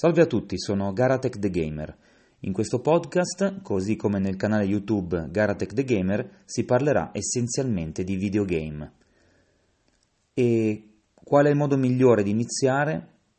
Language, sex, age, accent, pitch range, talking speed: English, male, 30-49, Italian, 95-125 Hz, 140 wpm